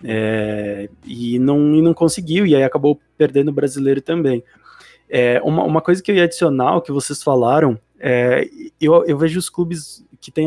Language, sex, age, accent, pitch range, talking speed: Portuguese, male, 20-39, Brazilian, 130-160 Hz, 190 wpm